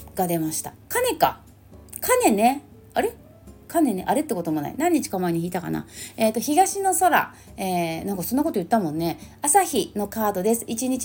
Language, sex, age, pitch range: Japanese, female, 30-49, 180-285 Hz